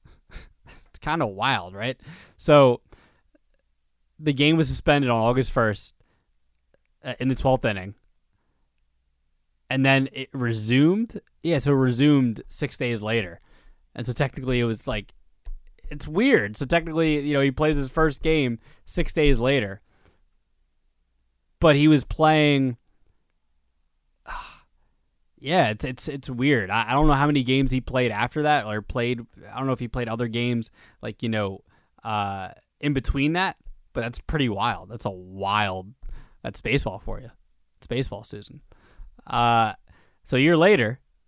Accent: American